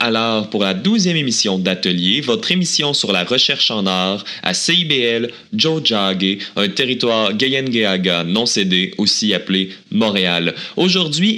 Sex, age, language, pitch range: male, 30-49, French, 100-165 Hz